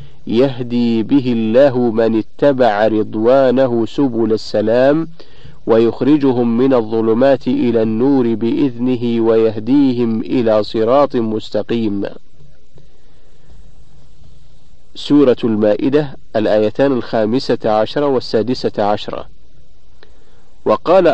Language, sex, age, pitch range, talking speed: Arabic, male, 50-69, 115-140 Hz, 75 wpm